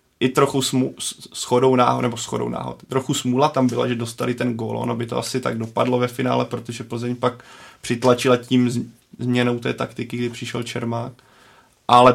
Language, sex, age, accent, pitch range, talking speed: Czech, male, 20-39, native, 120-130 Hz, 180 wpm